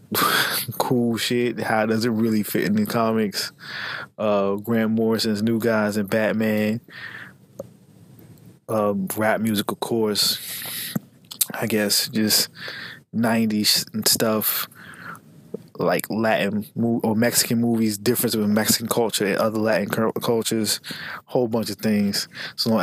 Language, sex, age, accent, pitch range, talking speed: English, male, 20-39, American, 105-115 Hz, 130 wpm